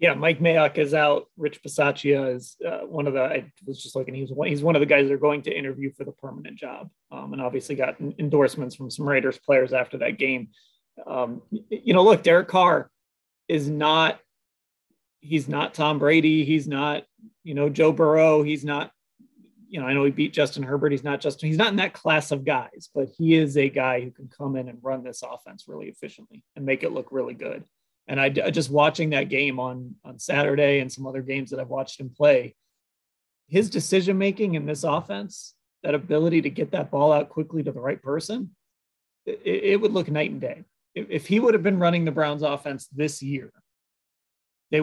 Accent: American